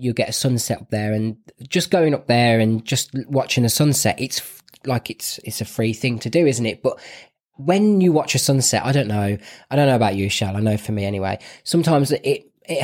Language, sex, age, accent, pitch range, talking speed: English, male, 20-39, British, 115-150 Hz, 245 wpm